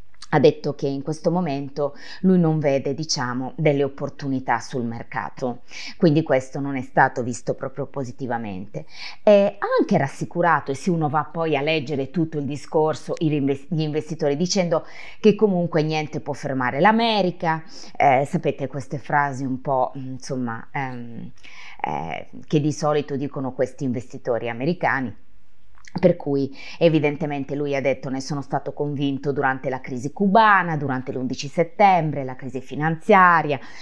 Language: Italian